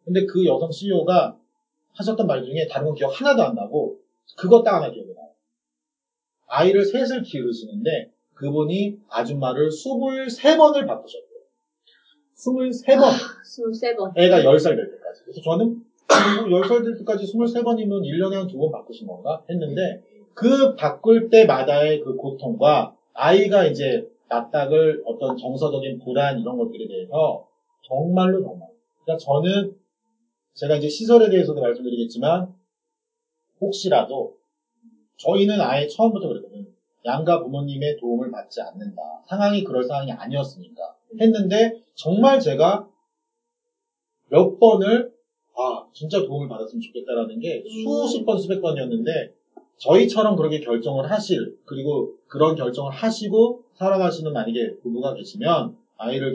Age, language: 40-59, Korean